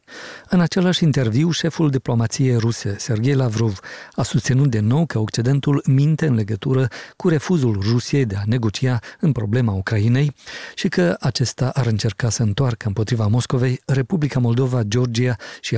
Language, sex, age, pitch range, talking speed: Romanian, male, 50-69, 110-140 Hz, 150 wpm